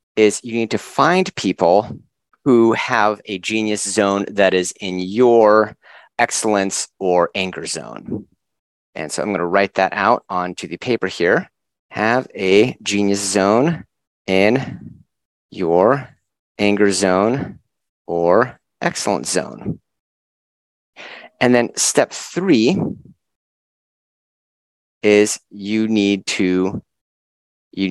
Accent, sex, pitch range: American, male, 95-125 Hz